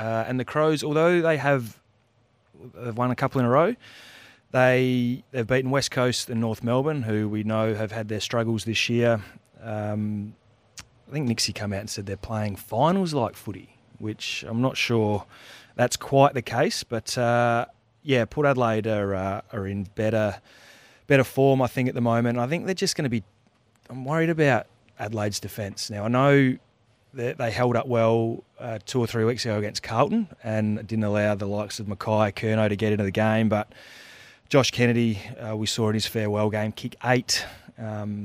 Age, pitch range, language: 30-49, 105-125 Hz, English